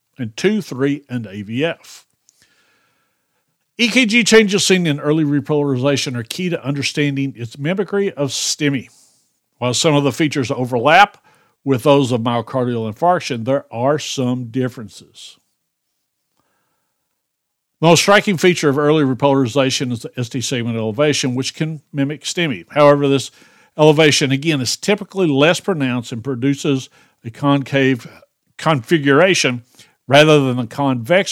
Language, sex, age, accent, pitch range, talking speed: English, male, 60-79, American, 130-155 Hz, 130 wpm